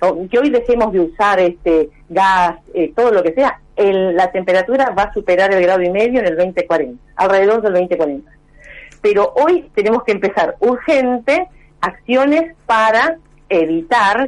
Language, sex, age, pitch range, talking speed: Spanish, female, 40-59, 180-265 Hz, 155 wpm